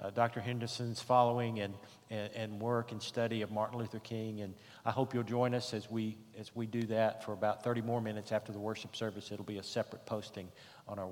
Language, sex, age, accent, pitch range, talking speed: English, male, 50-69, American, 110-135 Hz, 225 wpm